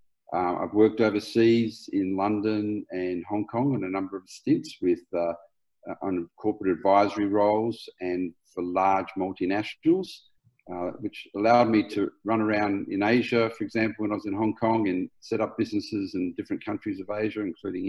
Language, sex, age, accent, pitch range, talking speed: English, male, 50-69, Australian, 100-120 Hz, 175 wpm